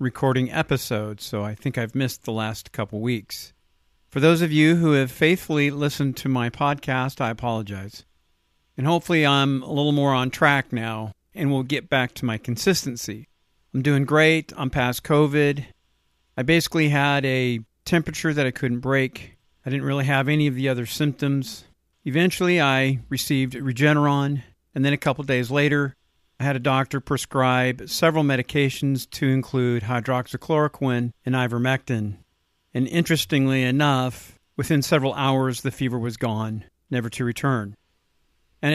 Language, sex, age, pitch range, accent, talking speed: English, male, 50-69, 115-150 Hz, American, 155 wpm